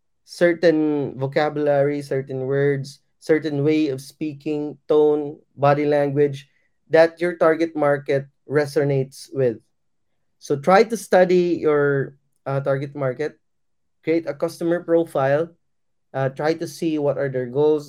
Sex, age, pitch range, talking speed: male, 20-39, 135-155 Hz, 125 wpm